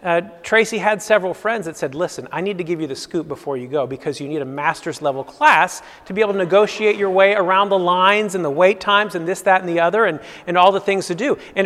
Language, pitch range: English, 175-225 Hz